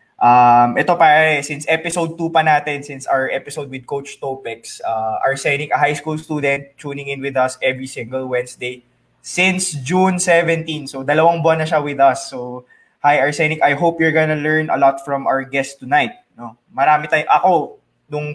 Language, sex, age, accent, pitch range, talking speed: English, male, 20-39, Filipino, 135-155 Hz, 185 wpm